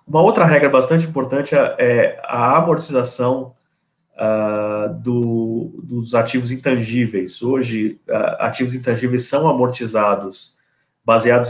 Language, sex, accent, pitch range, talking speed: Portuguese, male, Brazilian, 110-130 Hz, 105 wpm